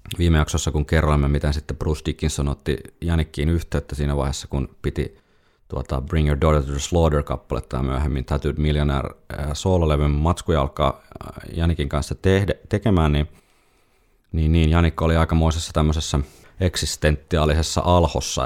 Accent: native